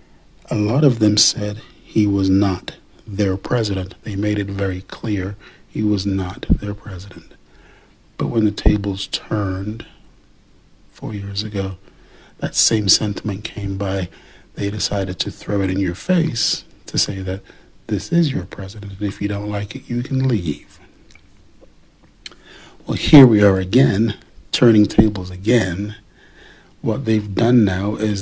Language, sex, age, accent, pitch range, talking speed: English, male, 40-59, American, 100-115 Hz, 150 wpm